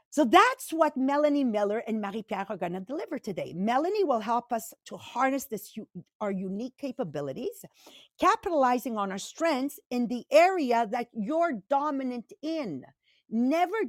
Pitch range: 225-310 Hz